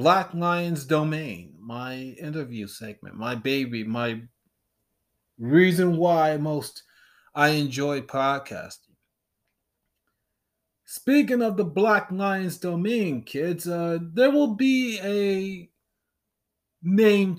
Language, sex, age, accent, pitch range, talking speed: English, male, 30-49, American, 135-185 Hz, 95 wpm